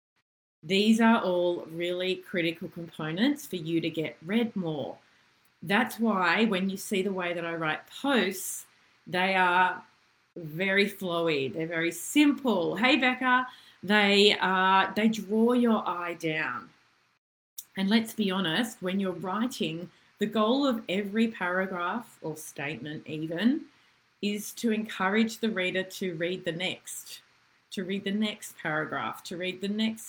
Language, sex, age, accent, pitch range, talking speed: English, female, 30-49, Australian, 170-225 Hz, 145 wpm